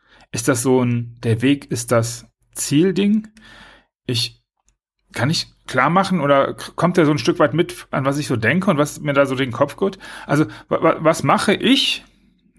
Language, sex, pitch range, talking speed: German, male, 120-170 Hz, 195 wpm